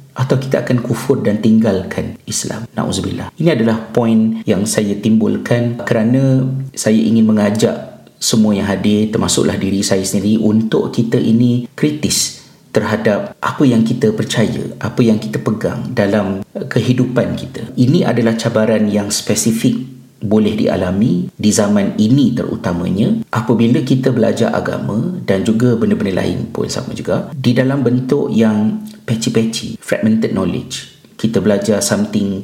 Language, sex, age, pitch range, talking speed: Malay, male, 50-69, 105-125 Hz, 135 wpm